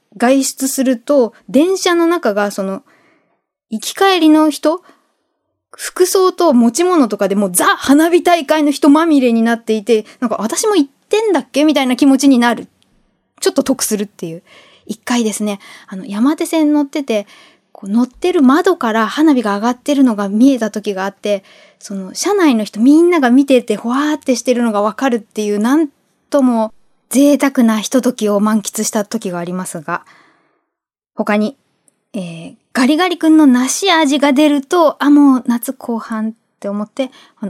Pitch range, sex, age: 215-290 Hz, female, 20-39